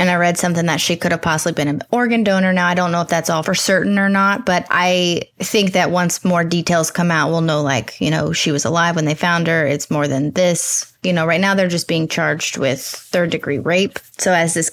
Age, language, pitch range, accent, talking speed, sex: 20-39, English, 165-195 Hz, American, 260 wpm, female